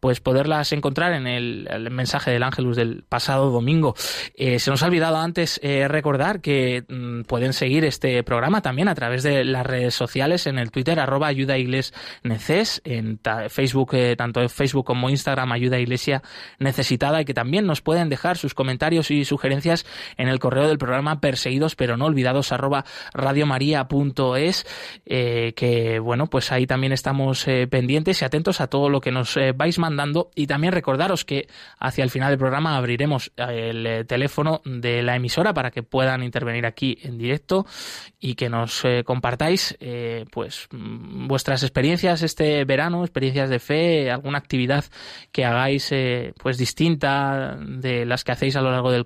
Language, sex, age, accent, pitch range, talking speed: Spanish, male, 20-39, Spanish, 125-150 Hz, 175 wpm